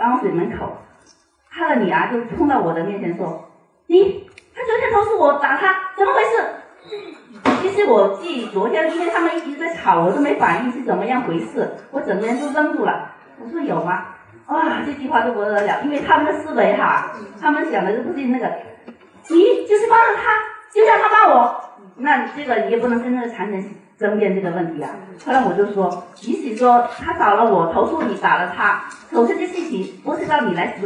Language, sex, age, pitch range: Chinese, female, 40-59, 200-320 Hz